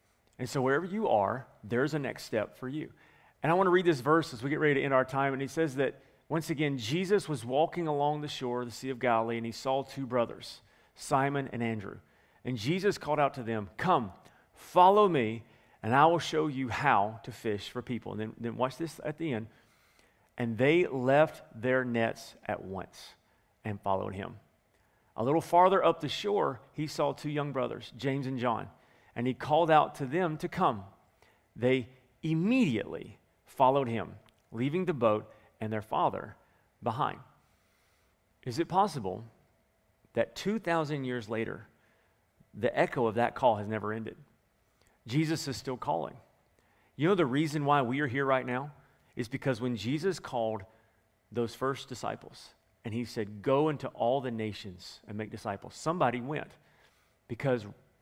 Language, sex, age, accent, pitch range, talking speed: English, male, 40-59, American, 115-150 Hz, 180 wpm